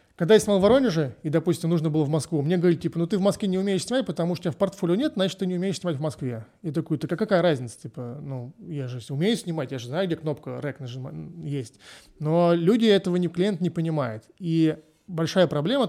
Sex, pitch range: male, 140-180 Hz